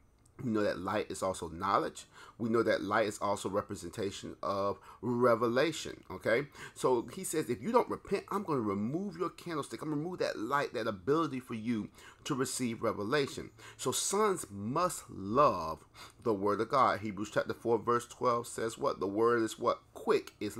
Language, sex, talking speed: English, male, 185 wpm